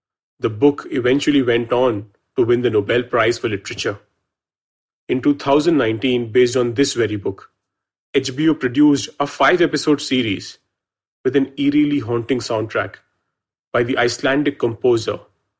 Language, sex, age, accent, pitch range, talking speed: English, male, 30-49, Indian, 120-150 Hz, 125 wpm